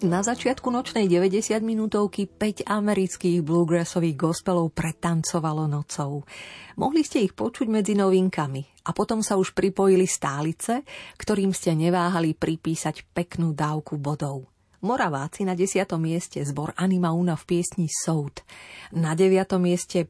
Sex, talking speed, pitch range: female, 125 wpm, 165-210 Hz